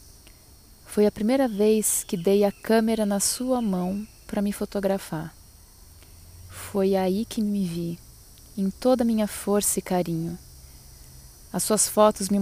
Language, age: Portuguese, 20-39